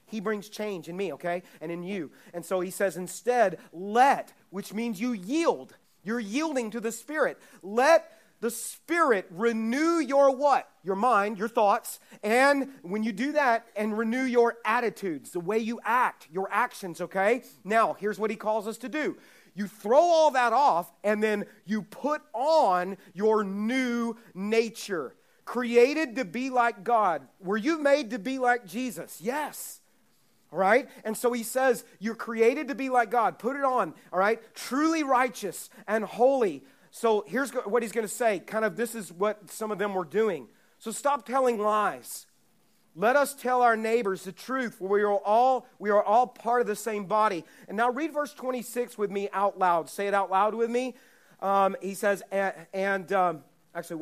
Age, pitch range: 30-49, 200-250 Hz